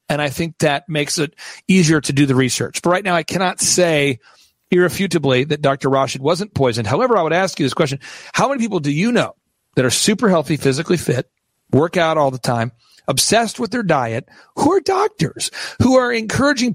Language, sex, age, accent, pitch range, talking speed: English, male, 40-59, American, 140-185 Hz, 205 wpm